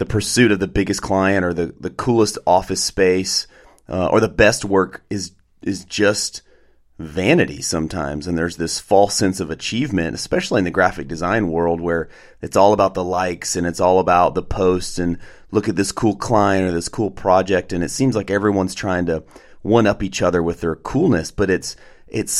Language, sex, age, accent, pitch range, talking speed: English, male, 30-49, American, 85-105 Hz, 200 wpm